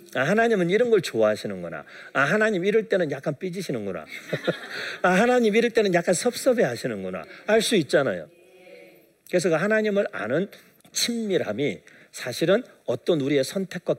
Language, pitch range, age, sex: Korean, 145-195 Hz, 40-59, male